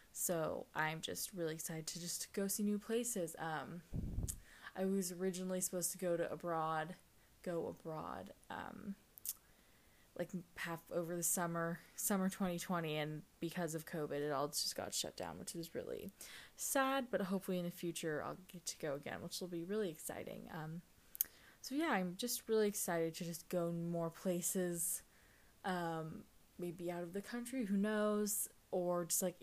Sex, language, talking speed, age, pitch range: female, English, 165 wpm, 10-29, 165-195 Hz